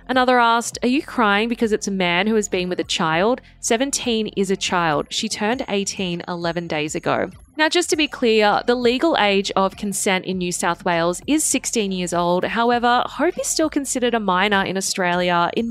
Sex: female